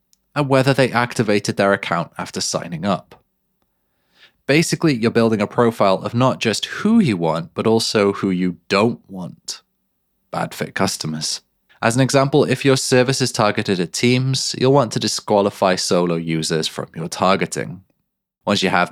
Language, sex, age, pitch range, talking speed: English, male, 20-39, 90-125 Hz, 160 wpm